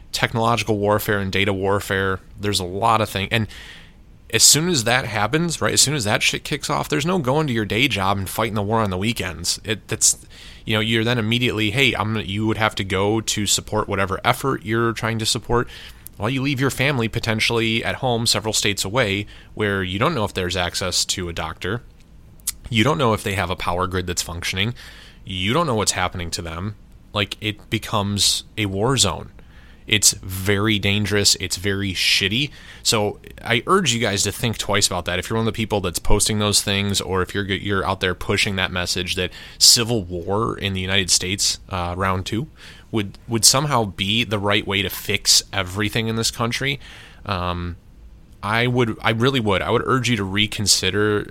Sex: male